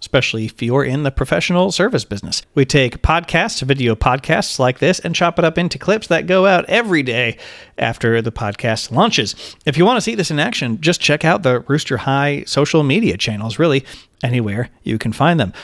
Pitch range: 130-170 Hz